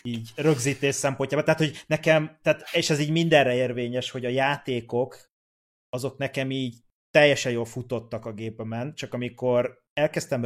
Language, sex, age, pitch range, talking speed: Hungarian, male, 30-49, 110-135 Hz, 145 wpm